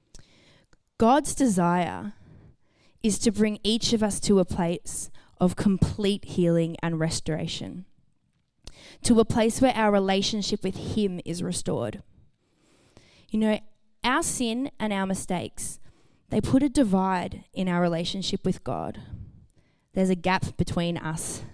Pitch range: 180-220 Hz